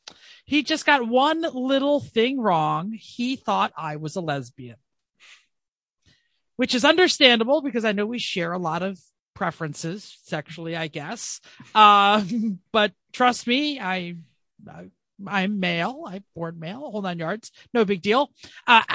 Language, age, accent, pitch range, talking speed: English, 30-49, American, 170-245 Hz, 145 wpm